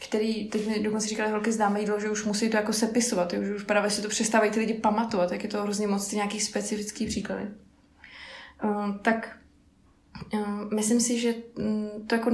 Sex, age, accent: female, 20-39, native